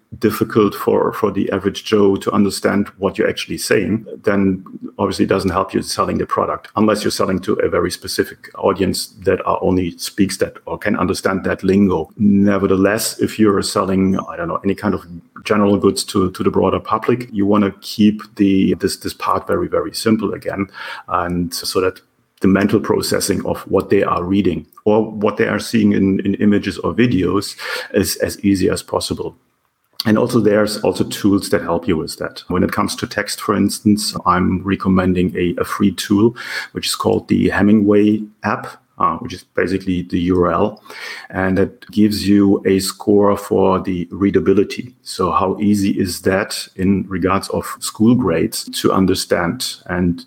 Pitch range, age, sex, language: 95-105 Hz, 40-59, male, English